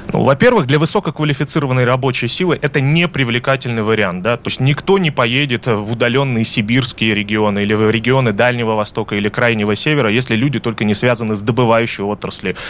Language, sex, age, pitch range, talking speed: Russian, male, 20-39, 120-160 Hz, 165 wpm